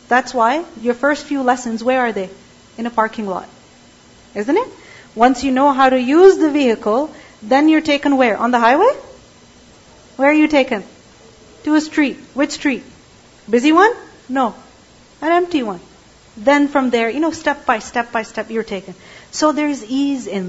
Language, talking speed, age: English, 180 wpm, 40-59